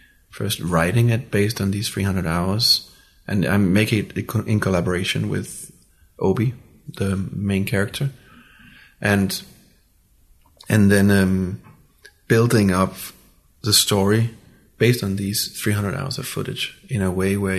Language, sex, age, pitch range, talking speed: English, male, 30-49, 95-120 Hz, 130 wpm